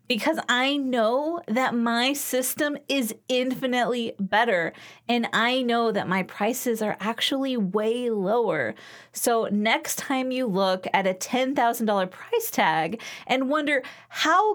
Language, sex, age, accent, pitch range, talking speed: English, female, 20-39, American, 215-270 Hz, 130 wpm